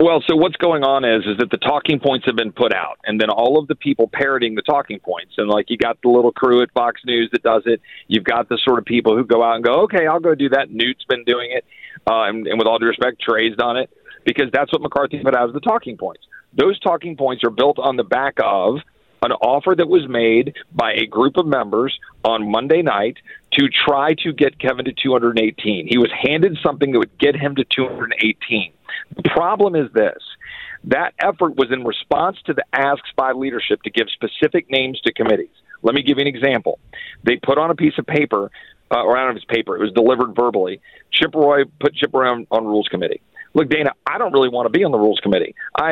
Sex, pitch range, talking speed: male, 120-160 Hz, 240 wpm